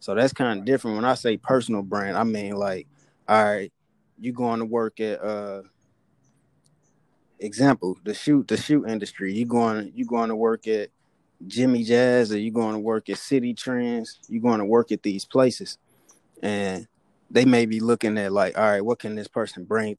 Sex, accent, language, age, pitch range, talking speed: male, American, English, 20-39, 105-125 Hz, 195 wpm